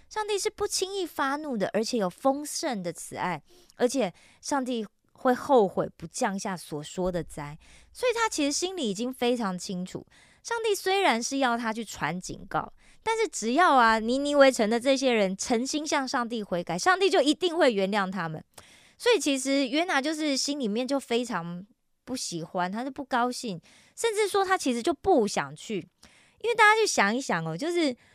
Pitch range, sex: 200-295 Hz, female